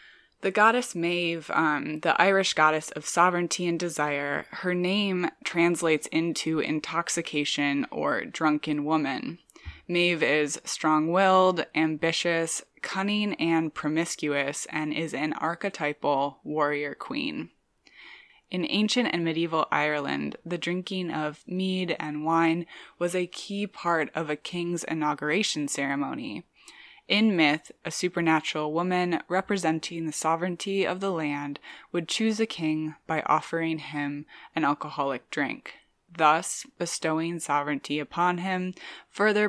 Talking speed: 120 wpm